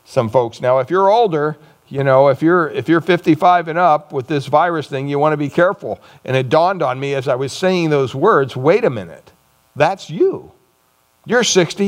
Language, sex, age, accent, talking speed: English, male, 60-79, American, 210 wpm